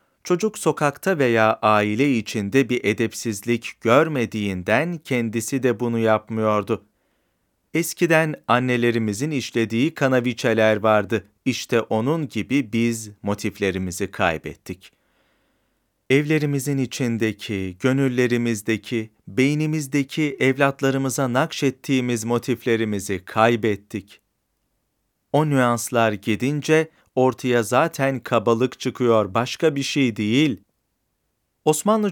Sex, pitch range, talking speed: male, 110-135 Hz, 80 wpm